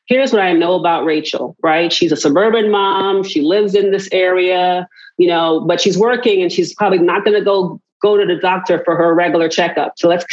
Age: 40-59